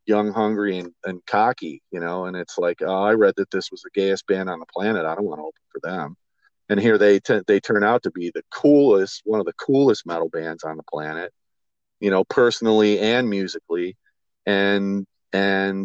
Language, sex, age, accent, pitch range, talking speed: English, male, 40-59, American, 100-130 Hz, 205 wpm